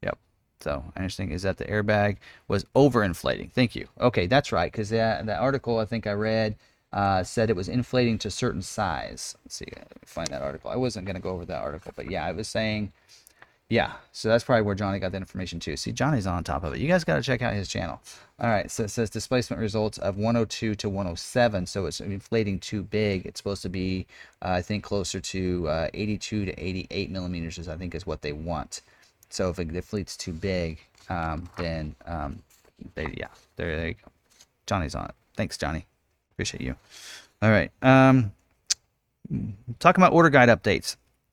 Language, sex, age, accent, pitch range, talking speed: English, male, 30-49, American, 90-115 Hz, 195 wpm